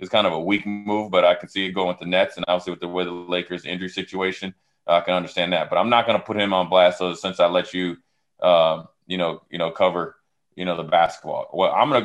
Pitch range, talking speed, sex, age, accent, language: 90-100 Hz, 280 wpm, male, 20-39, American, English